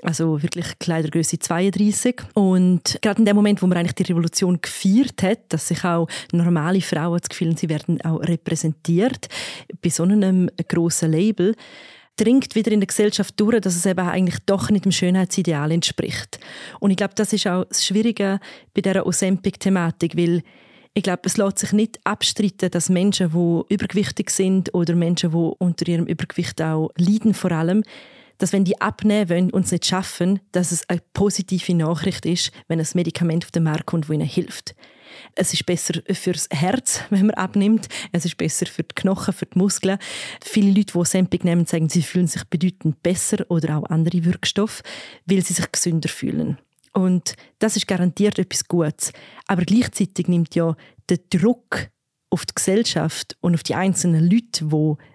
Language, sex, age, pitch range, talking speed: German, female, 20-39, 170-200 Hz, 180 wpm